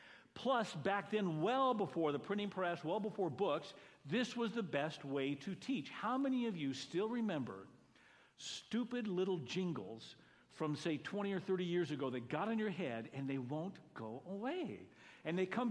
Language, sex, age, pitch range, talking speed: English, male, 50-69, 155-230 Hz, 180 wpm